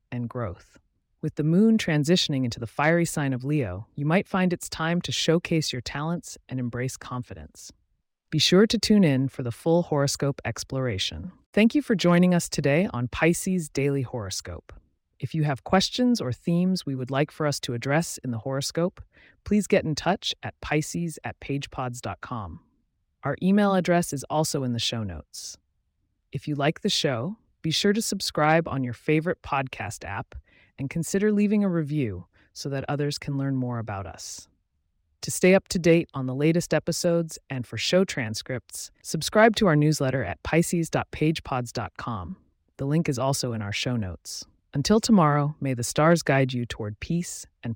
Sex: female